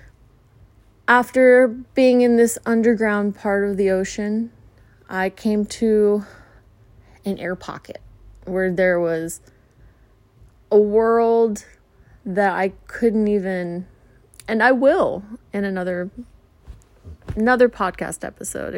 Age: 20-39